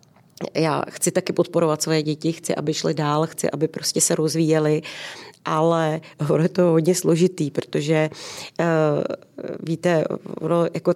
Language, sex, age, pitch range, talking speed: Czech, female, 30-49, 155-180 Hz, 125 wpm